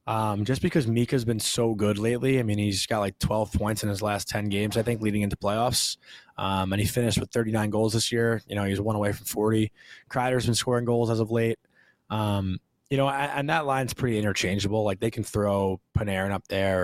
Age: 20-39